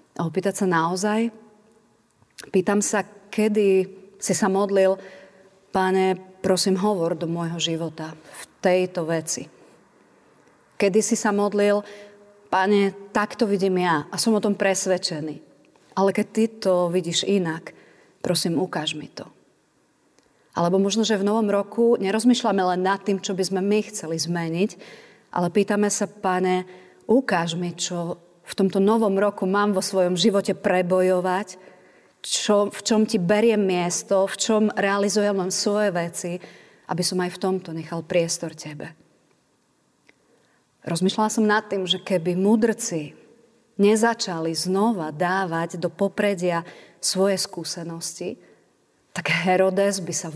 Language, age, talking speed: Slovak, 30-49, 130 wpm